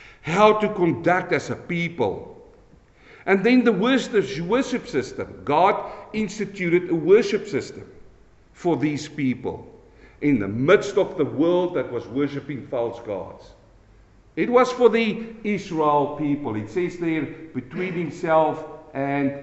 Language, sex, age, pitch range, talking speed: English, male, 50-69, 120-175 Hz, 135 wpm